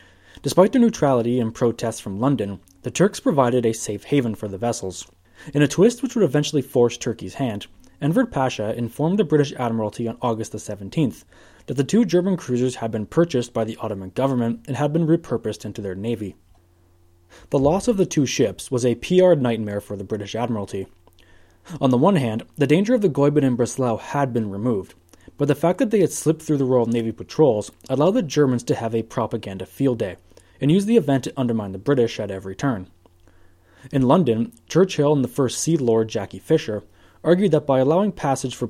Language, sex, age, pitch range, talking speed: English, male, 20-39, 100-145 Hz, 200 wpm